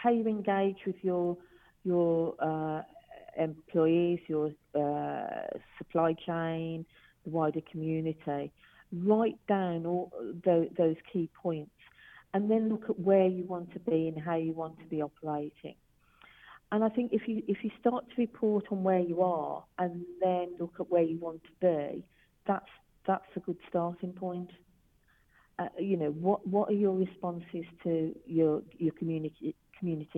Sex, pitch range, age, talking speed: female, 155-190 Hz, 40-59, 155 wpm